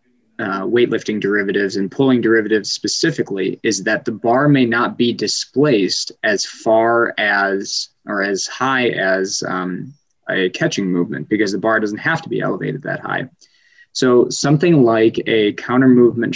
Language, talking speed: English, 155 wpm